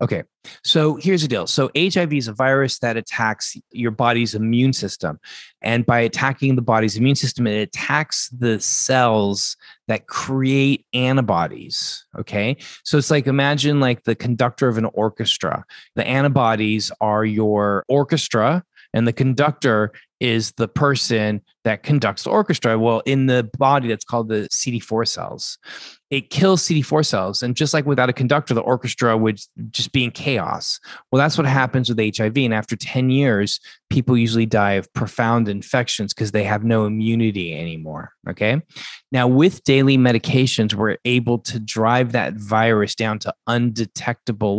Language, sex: English, male